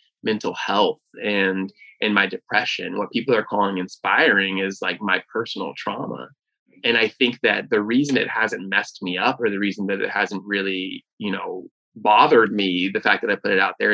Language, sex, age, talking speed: English, male, 20-39, 200 wpm